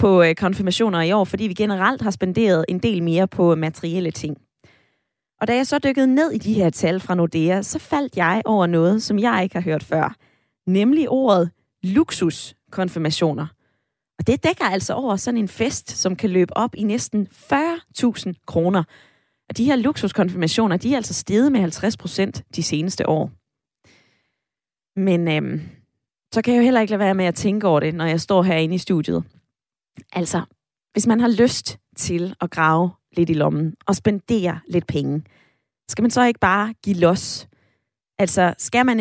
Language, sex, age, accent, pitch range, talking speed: Danish, female, 20-39, native, 170-220 Hz, 180 wpm